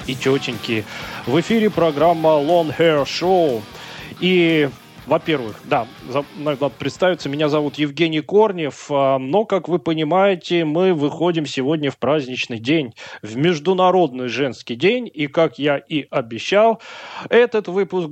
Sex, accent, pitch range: male, native, 135-175 Hz